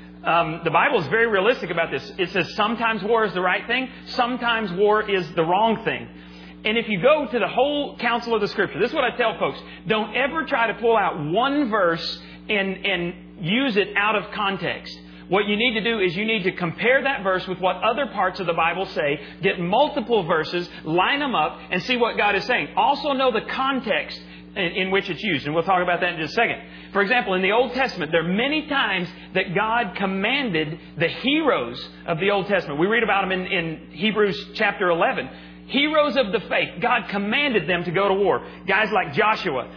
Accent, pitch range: American, 175-230 Hz